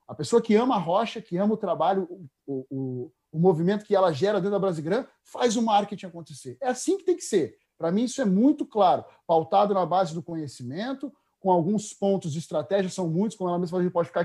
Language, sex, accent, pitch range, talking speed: Portuguese, male, Brazilian, 175-220 Hz, 235 wpm